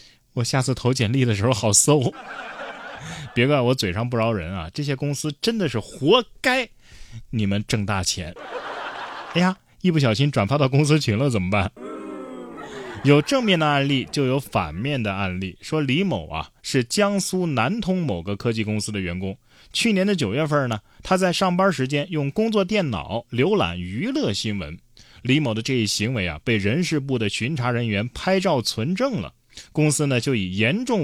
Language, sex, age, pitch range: Chinese, male, 20-39, 105-150 Hz